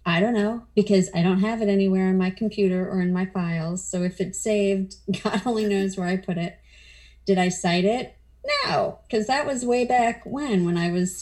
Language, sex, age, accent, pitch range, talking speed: English, female, 30-49, American, 175-210 Hz, 220 wpm